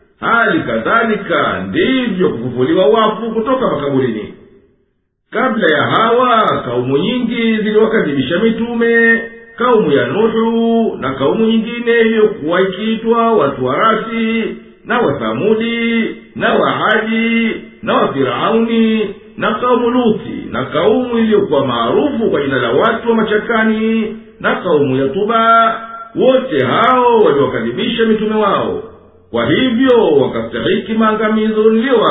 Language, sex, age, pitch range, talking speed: Swahili, male, 50-69, 210-230 Hz, 100 wpm